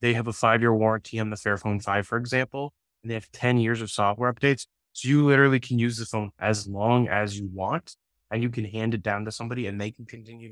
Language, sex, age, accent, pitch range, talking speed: English, male, 20-39, American, 105-125 Hz, 245 wpm